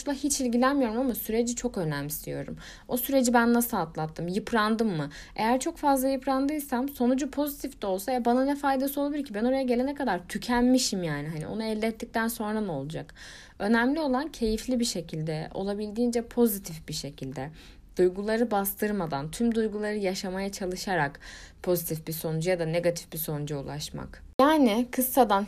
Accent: native